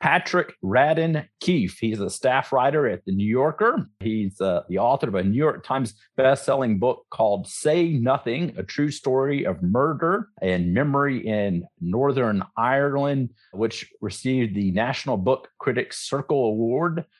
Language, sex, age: English, male, 50-69